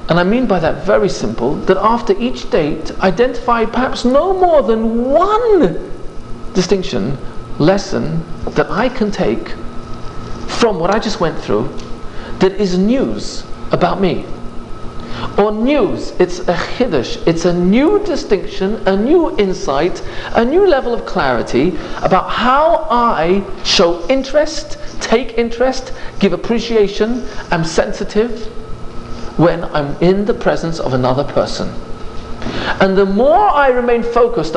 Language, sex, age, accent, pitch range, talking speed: English, male, 40-59, British, 145-235 Hz, 130 wpm